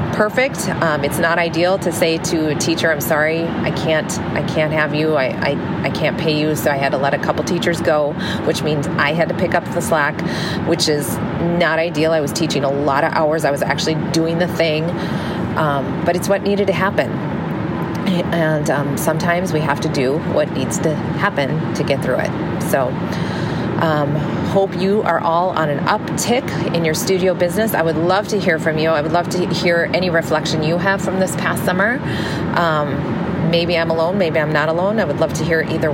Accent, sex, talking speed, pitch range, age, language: American, female, 215 wpm, 160-190 Hz, 30-49, English